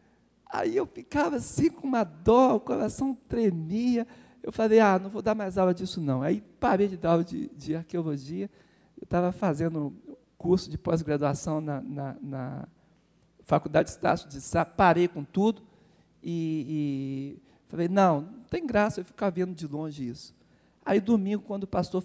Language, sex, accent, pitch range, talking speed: Portuguese, male, Brazilian, 160-215 Hz, 170 wpm